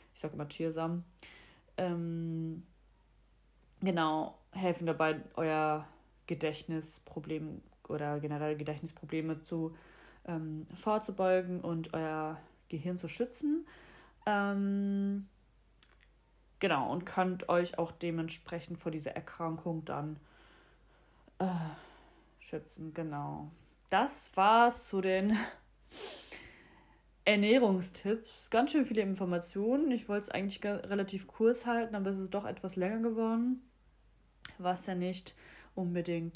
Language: German